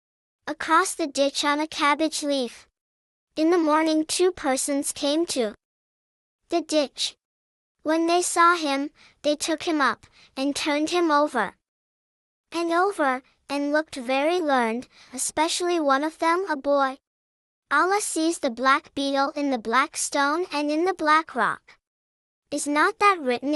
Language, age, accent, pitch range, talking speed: English, 10-29, American, 275-330 Hz, 150 wpm